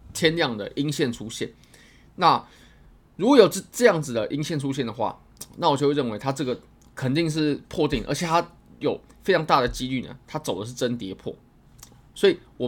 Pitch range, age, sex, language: 120-160 Hz, 20-39, male, Chinese